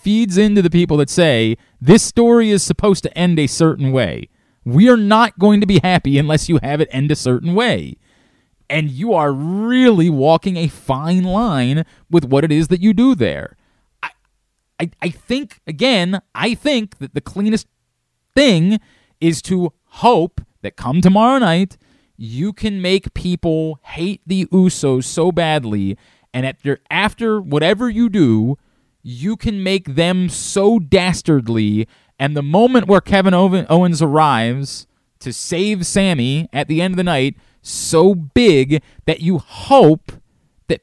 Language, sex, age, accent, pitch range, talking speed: English, male, 30-49, American, 140-195 Hz, 155 wpm